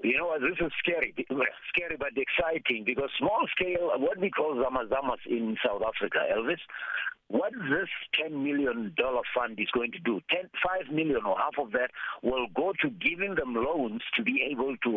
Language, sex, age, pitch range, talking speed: English, male, 60-79, 125-170 Hz, 180 wpm